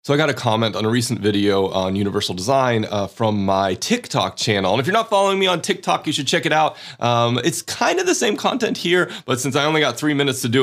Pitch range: 110-145 Hz